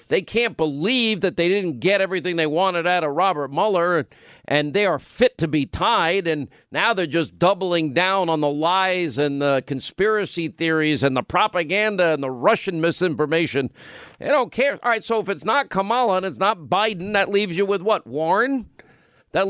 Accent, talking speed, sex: American, 190 wpm, male